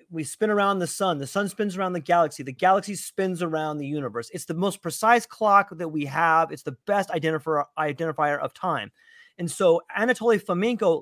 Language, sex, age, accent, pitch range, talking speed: English, male, 30-49, American, 170-245 Hz, 195 wpm